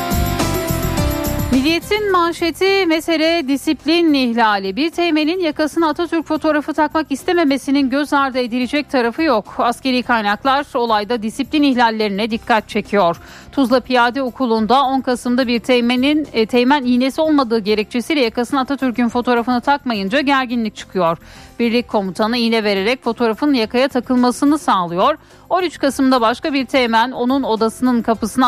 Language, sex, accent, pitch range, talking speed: Turkish, female, native, 225-280 Hz, 120 wpm